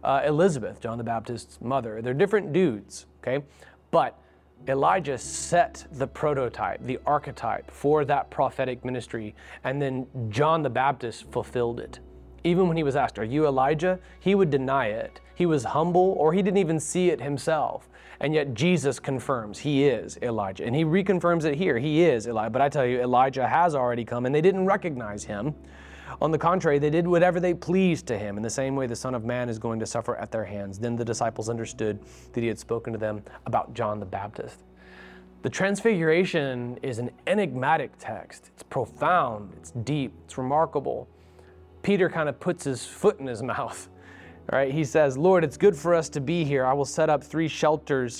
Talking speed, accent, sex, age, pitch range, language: 195 wpm, American, male, 30-49, 115-155 Hz, English